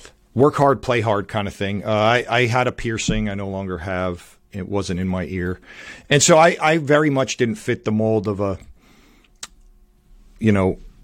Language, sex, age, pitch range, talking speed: English, male, 40-59, 95-115 Hz, 195 wpm